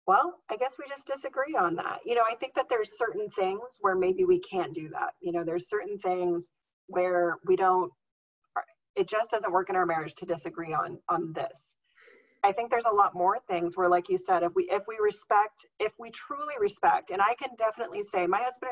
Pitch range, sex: 180-250 Hz, female